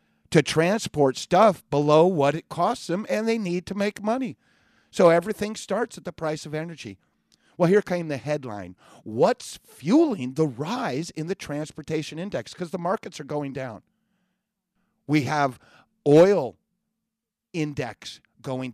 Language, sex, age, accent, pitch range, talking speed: English, male, 50-69, American, 115-180 Hz, 145 wpm